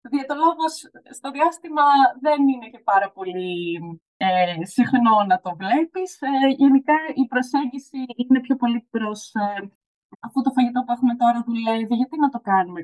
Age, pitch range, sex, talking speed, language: 20-39, 215-275 Hz, female, 165 wpm, Greek